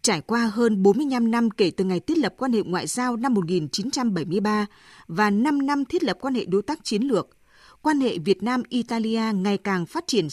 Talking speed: 205 wpm